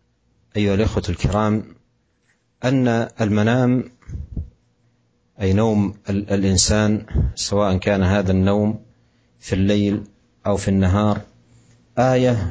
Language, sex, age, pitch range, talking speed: Indonesian, male, 40-59, 95-115 Hz, 85 wpm